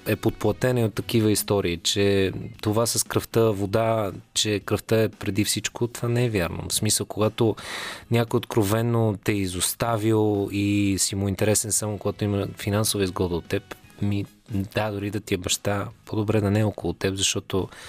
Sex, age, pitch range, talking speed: male, 20-39, 105-125 Hz, 175 wpm